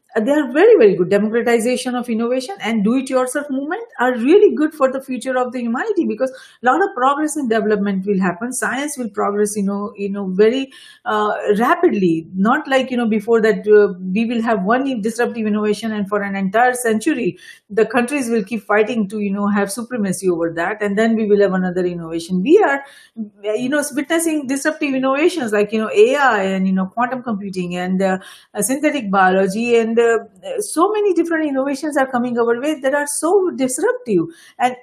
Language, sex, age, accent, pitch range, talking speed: English, female, 50-69, Indian, 215-305 Hz, 195 wpm